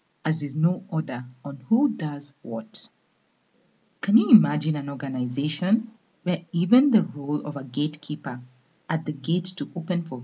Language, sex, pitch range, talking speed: English, female, 140-200 Hz, 150 wpm